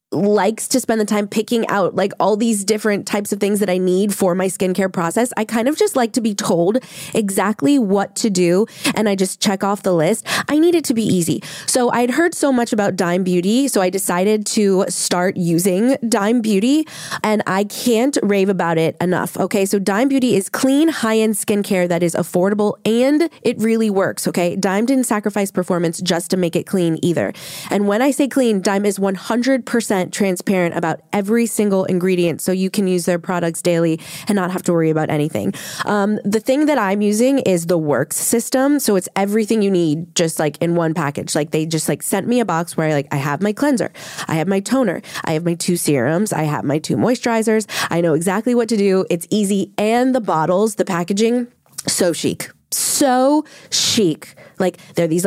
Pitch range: 175-225 Hz